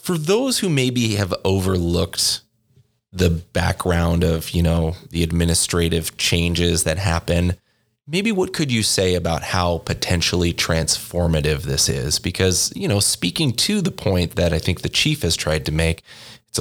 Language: English